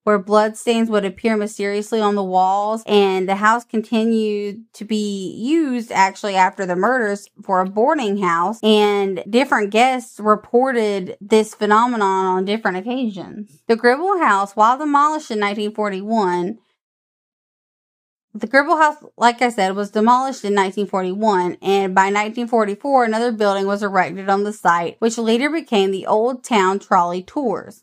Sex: female